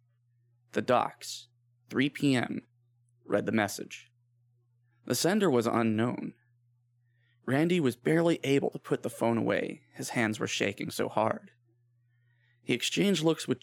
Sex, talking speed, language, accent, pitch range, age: male, 130 wpm, English, American, 120-145 Hz, 20-39